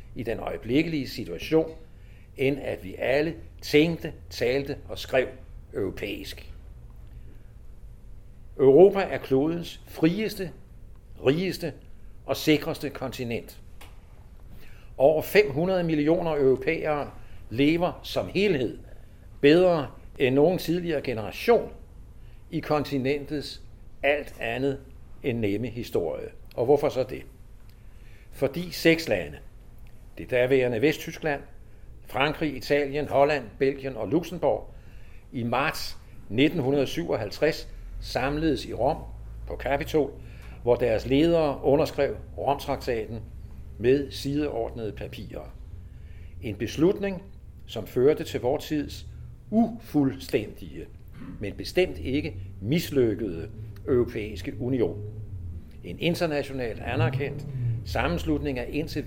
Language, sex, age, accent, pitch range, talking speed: Danish, male, 60-79, native, 105-150 Hz, 90 wpm